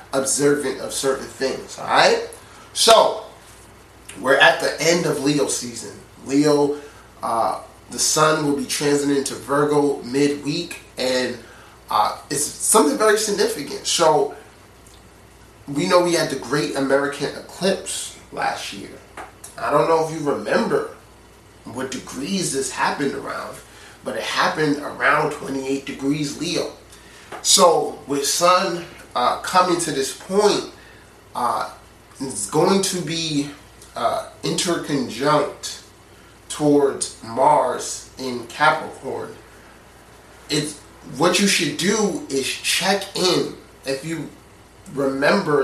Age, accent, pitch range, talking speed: 30-49, American, 130-160 Hz, 115 wpm